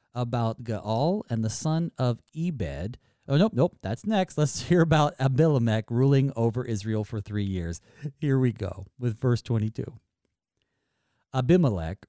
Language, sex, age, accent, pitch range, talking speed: English, male, 40-59, American, 105-150 Hz, 145 wpm